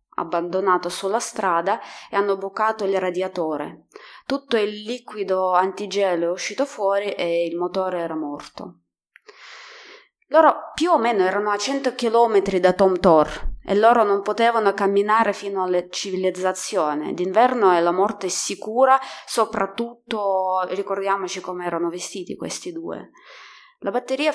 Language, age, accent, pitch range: Italian, 20-39, native, 175-205 Hz